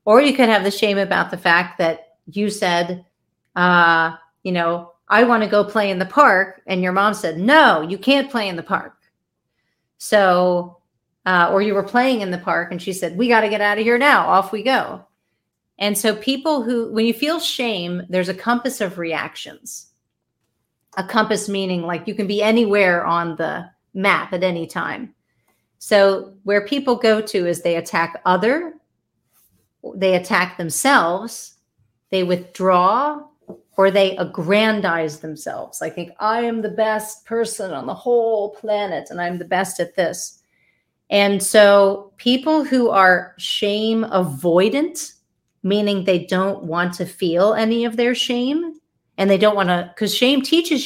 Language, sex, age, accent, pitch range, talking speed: English, female, 40-59, American, 180-225 Hz, 170 wpm